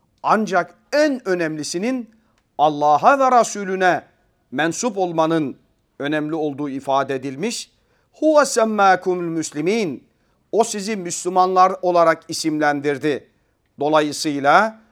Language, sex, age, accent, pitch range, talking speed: Turkish, male, 40-59, native, 145-205 Hz, 85 wpm